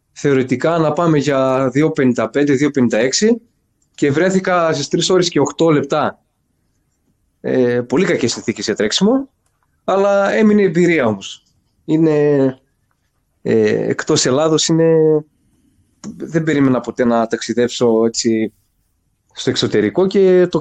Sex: male